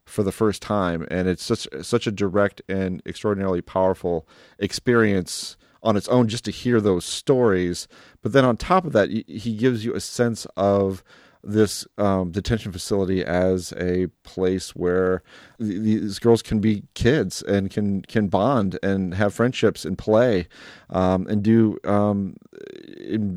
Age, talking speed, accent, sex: 30-49, 155 wpm, American, male